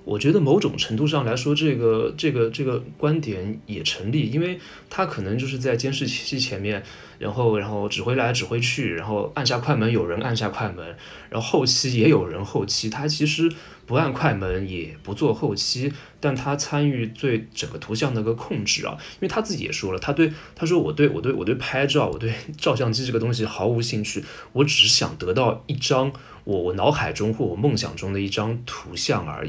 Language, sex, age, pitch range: Chinese, male, 20-39, 110-145 Hz